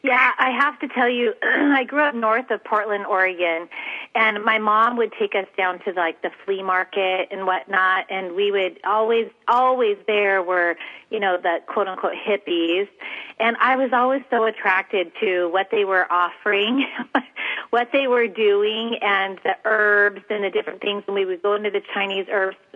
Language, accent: English, American